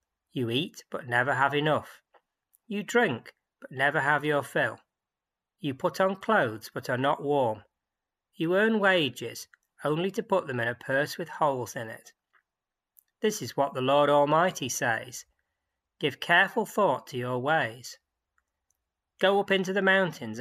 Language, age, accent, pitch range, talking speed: English, 40-59, British, 120-175 Hz, 155 wpm